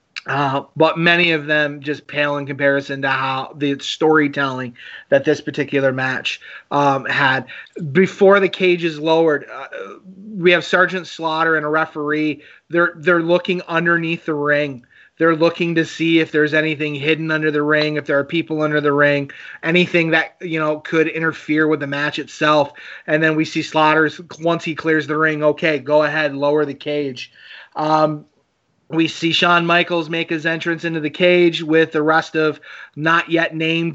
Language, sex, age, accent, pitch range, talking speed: English, male, 30-49, American, 145-165 Hz, 175 wpm